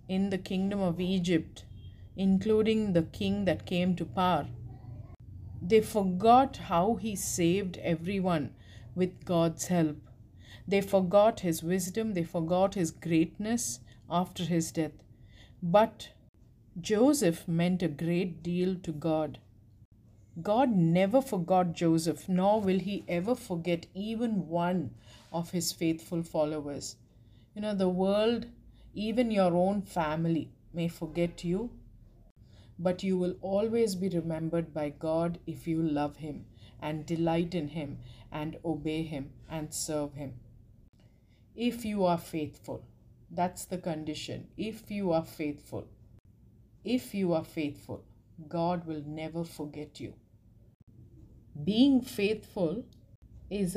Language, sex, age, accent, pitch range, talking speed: English, female, 50-69, Indian, 130-185 Hz, 125 wpm